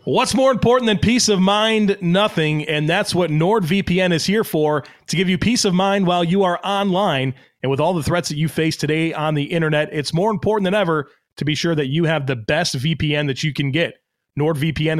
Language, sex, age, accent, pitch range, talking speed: English, male, 30-49, American, 145-185 Hz, 225 wpm